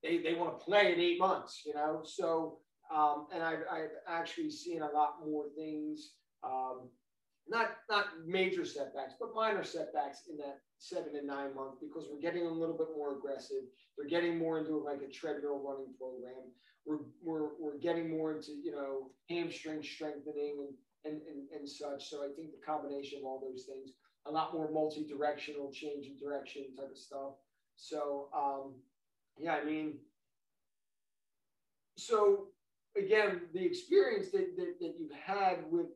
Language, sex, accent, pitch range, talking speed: English, male, American, 140-185 Hz, 170 wpm